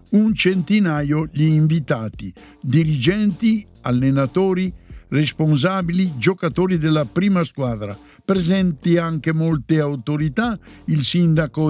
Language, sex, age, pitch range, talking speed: Italian, male, 60-79, 145-185 Hz, 85 wpm